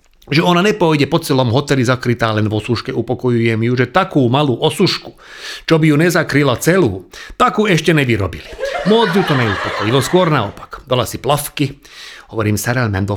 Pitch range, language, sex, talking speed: 115-160 Hz, Slovak, male, 165 wpm